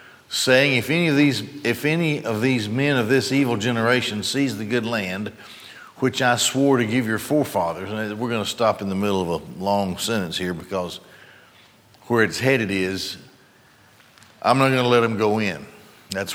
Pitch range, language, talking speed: 105-135 Hz, English, 190 wpm